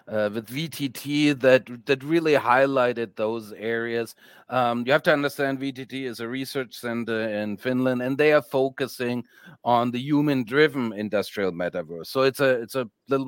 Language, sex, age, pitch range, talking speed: English, male, 40-59, 105-135 Hz, 165 wpm